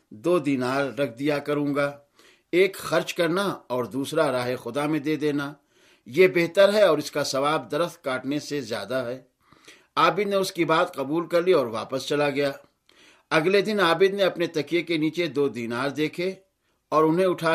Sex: male